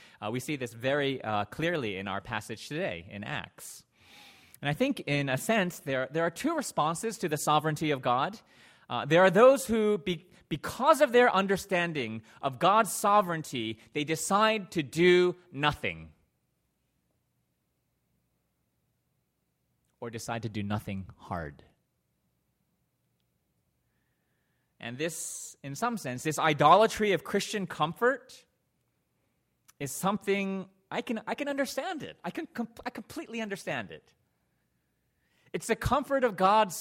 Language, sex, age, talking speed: English, male, 30-49, 135 wpm